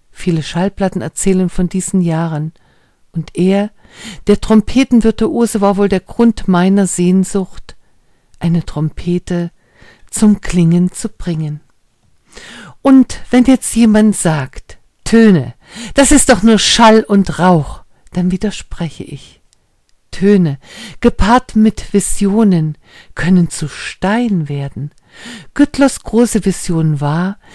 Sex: female